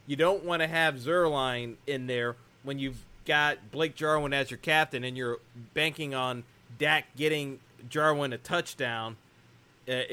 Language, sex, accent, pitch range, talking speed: English, male, American, 125-155 Hz, 155 wpm